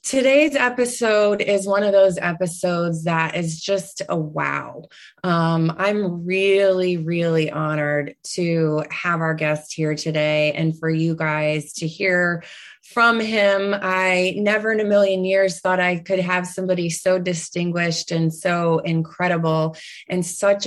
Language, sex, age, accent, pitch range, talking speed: English, female, 20-39, American, 170-205 Hz, 140 wpm